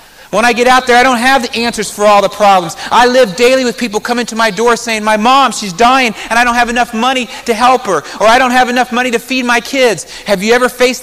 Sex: male